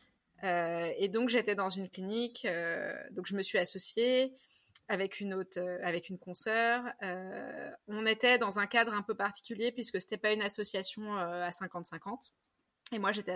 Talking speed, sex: 170 wpm, female